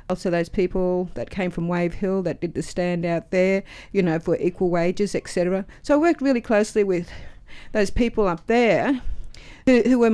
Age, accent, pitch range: 50-69, Australian, 175-220 Hz